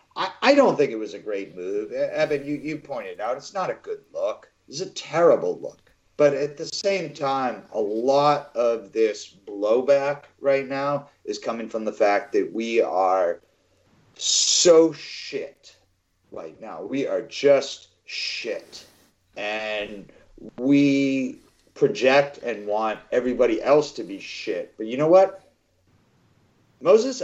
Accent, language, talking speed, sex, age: American, English, 145 wpm, male, 40-59